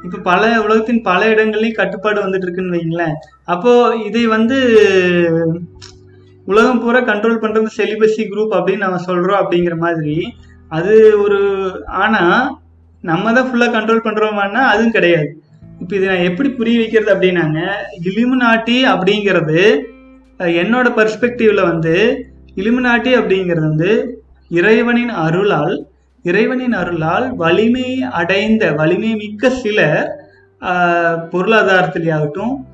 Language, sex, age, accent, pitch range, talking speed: Tamil, male, 30-49, native, 175-225 Hz, 105 wpm